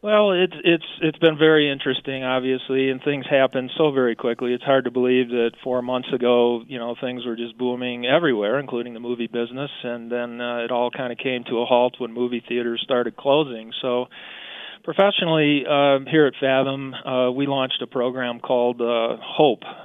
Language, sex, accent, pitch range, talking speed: English, male, American, 120-135 Hz, 190 wpm